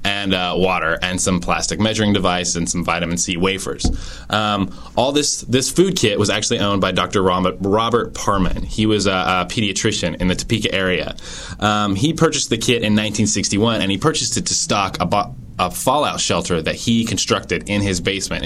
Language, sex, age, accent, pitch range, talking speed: English, male, 20-39, American, 90-110 Hz, 190 wpm